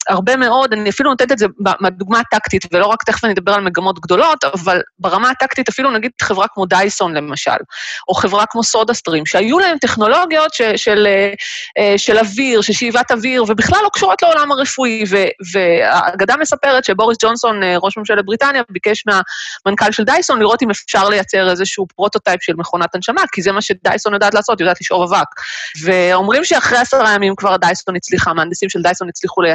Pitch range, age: 185-250 Hz, 30-49